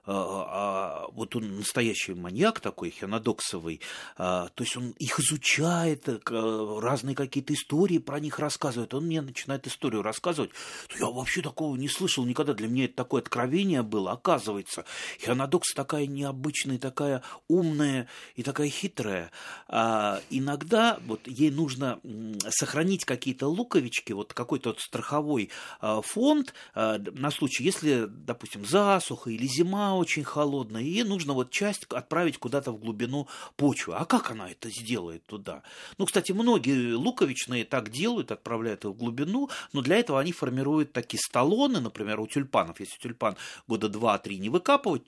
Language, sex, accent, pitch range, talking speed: Russian, male, native, 110-165 Hz, 150 wpm